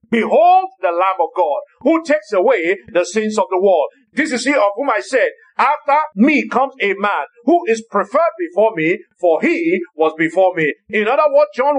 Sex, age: male, 50-69